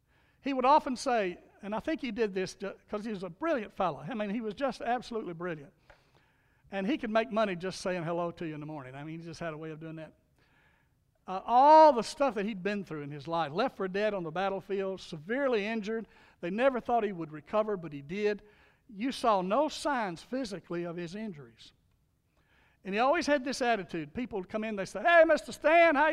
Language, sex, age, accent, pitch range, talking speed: English, male, 60-79, American, 170-235 Hz, 225 wpm